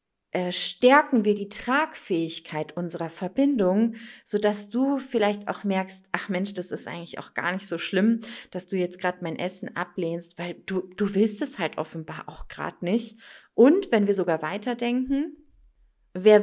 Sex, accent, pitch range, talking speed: female, German, 180-230 Hz, 165 wpm